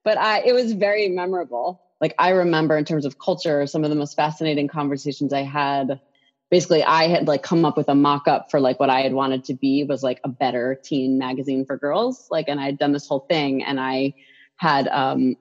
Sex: female